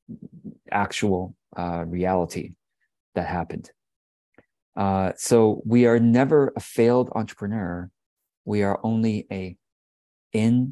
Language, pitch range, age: English, 95-110 Hz, 40-59